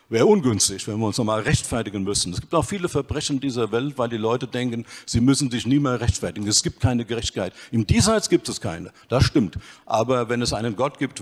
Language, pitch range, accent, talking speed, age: German, 115-140 Hz, German, 225 wpm, 50-69